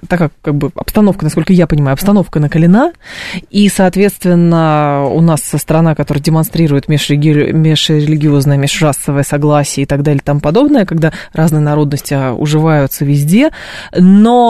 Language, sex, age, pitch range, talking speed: Russian, female, 20-39, 150-205 Hz, 135 wpm